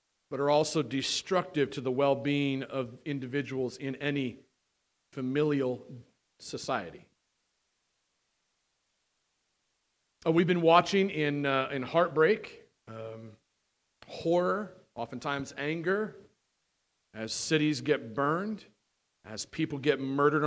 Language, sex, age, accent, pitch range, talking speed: English, male, 40-59, American, 120-155 Hz, 95 wpm